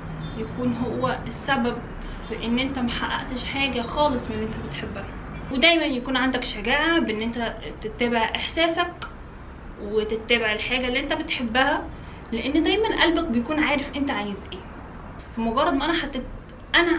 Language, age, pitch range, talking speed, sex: Arabic, 10-29, 240-300 Hz, 140 wpm, female